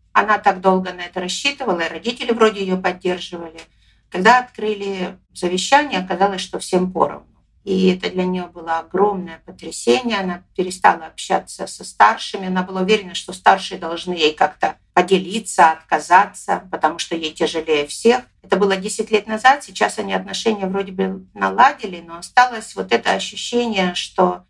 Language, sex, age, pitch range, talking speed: Russian, female, 50-69, 175-210 Hz, 150 wpm